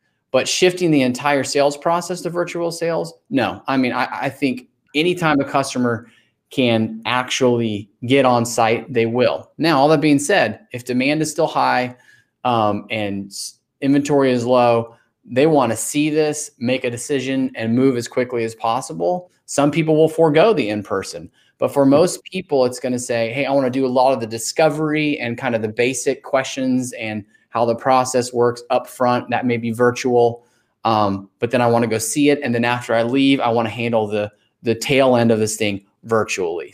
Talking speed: 200 wpm